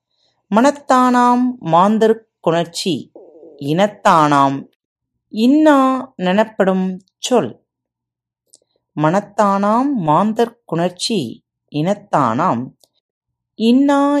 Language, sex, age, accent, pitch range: Tamil, female, 30-49, native, 150-235 Hz